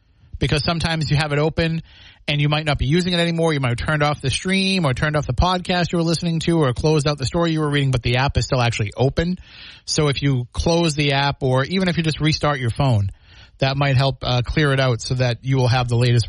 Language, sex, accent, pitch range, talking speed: English, male, American, 125-155 Hz, 270 wpm